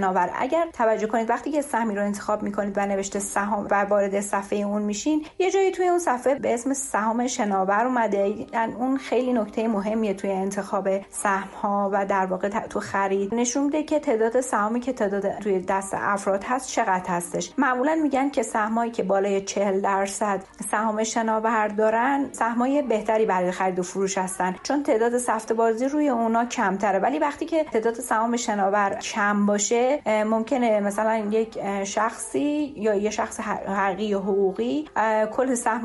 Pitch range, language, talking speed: 200-250 Hz, Persian, 165 wpm